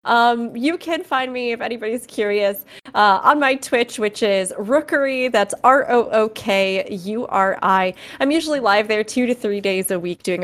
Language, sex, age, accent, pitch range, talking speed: English, female, 20-39, American, 190-245 Hz, 160 wpm